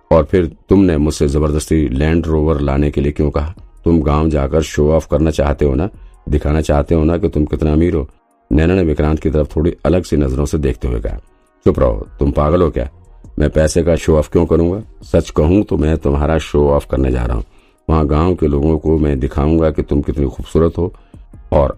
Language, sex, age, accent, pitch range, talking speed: Hindi, male, 50-69, native, 70-80 Hz, 155 wpm